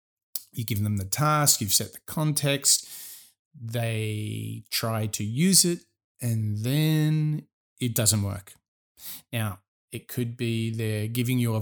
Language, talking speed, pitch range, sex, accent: English, 140 wpm, 110-140 Hz, male, Australian